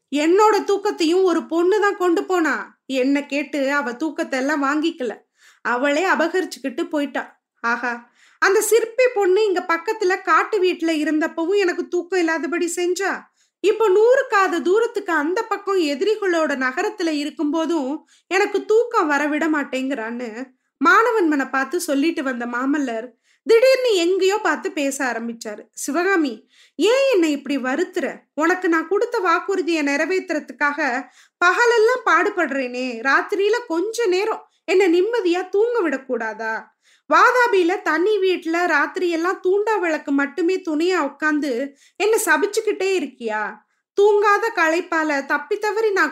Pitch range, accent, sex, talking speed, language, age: 285-390 Hz, native, female, 110 wpm, Tamil, 20-39